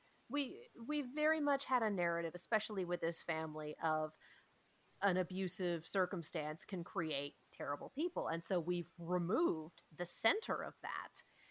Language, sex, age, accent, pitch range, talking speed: English, female, 30-49, American, 165-210 Hz, 140 wpm